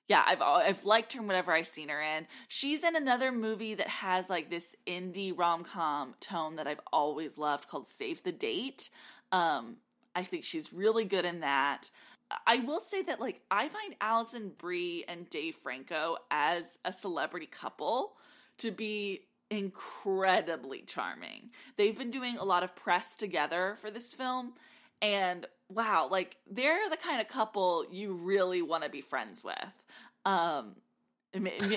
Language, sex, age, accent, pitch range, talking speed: English, female, 20-39, American, 180-250 Hz, 160 wpm